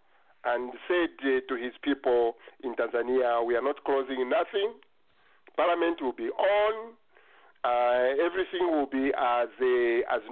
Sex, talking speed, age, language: male, 140 wpm, 50-69, English